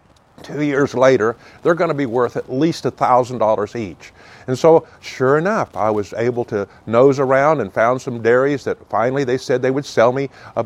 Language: English